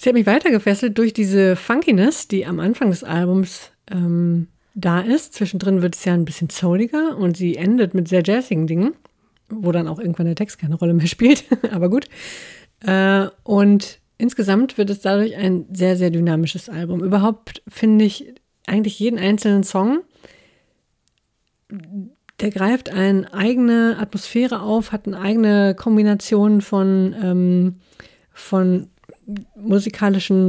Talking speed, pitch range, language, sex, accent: 145 wpm, 180-220 Hz, German, female, German